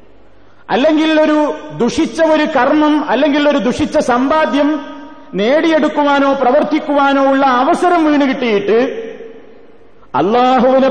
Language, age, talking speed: Malayalam, 40-59, 90 wpm